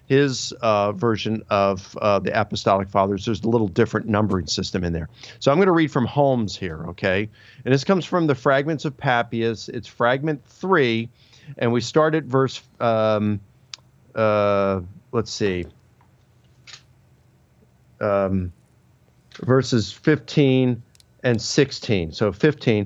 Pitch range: 105-130 Hz